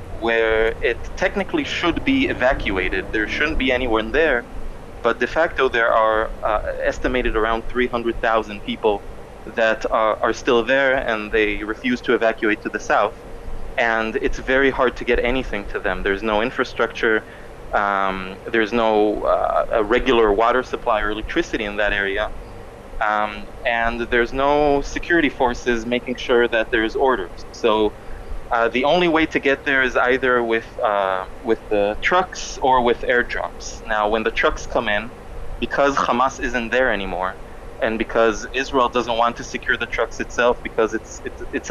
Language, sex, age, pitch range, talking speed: English, male, 20-39, 105-125 Hz, 160 wpm